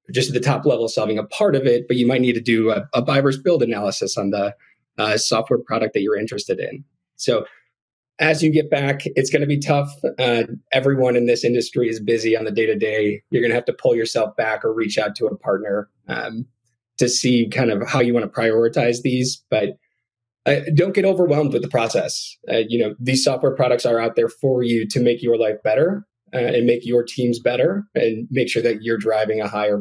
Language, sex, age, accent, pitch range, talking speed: English, male, 20-39, American, 115-140 Hz, 225 wpm